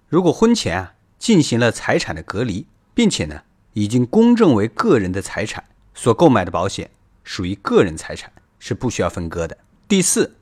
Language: Chinese